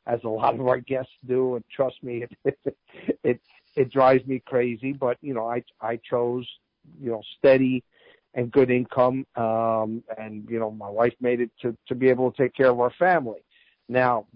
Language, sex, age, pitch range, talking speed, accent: English, male, 50-69, 120-135 Hz, 200 wpm, American